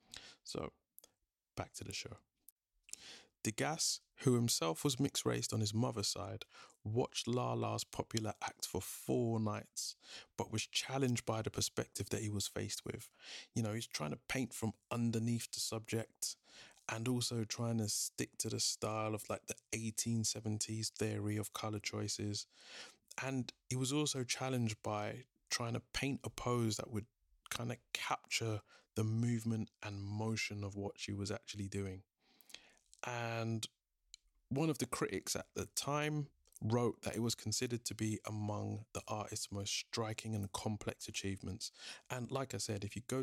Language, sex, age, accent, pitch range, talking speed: English, male, 20-39, British, 105-120 Hz, 160 wpm